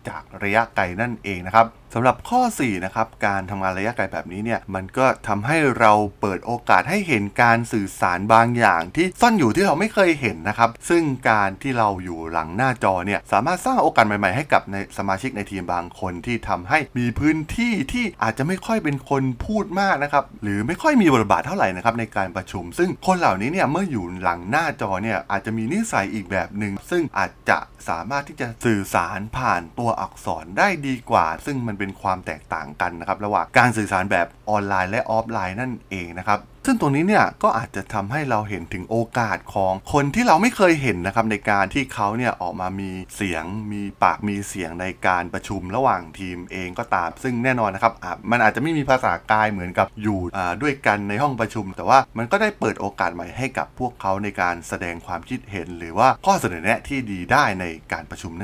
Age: 20-39